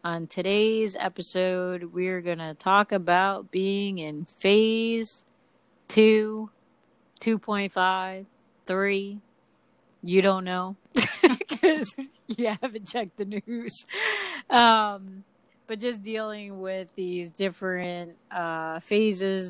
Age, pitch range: 30-49, 165-210 Hz